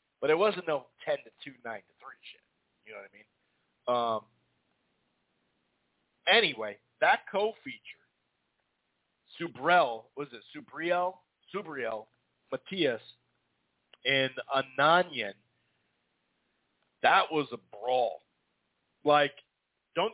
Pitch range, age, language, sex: 125-160 Hz, 40-59, English, male